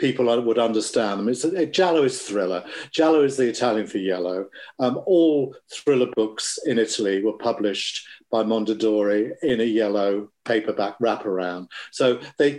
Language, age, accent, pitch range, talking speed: English, 50-69, British, 105-130 Hz, 155 wpm